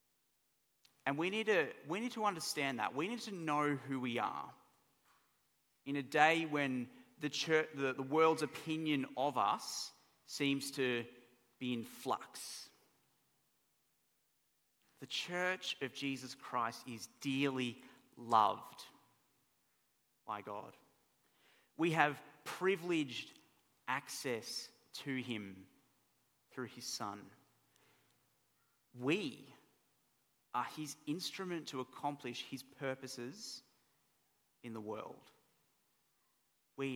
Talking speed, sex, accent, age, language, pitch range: 100 wpm, male, Australian, 40-59, English, 125-155 Hz